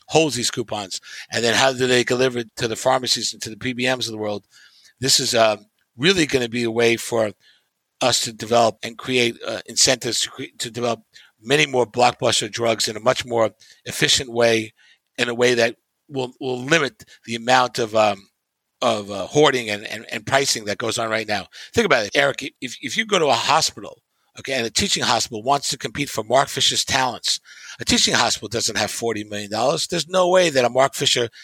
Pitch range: 115-140 Hz